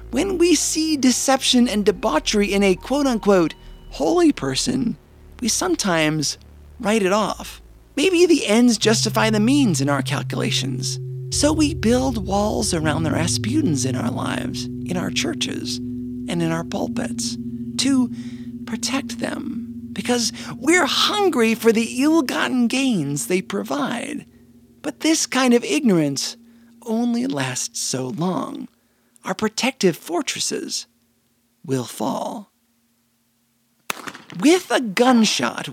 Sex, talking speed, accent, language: male, 120 wpm, American, English